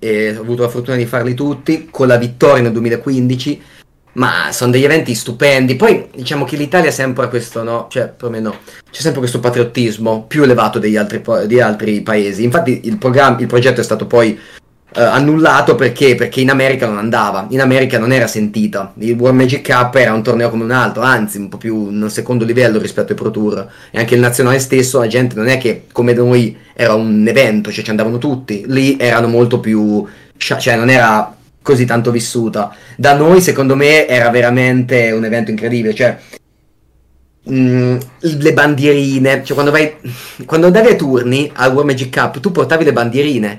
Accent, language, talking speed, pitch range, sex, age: native, Italian, 190 wpm, 115-145 Hz, male, 30-49